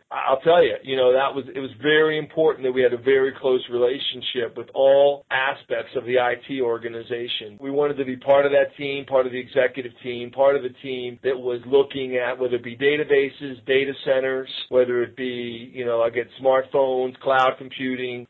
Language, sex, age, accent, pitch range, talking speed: English, male, 40-59, American, 125-140 Hz, 205 wpm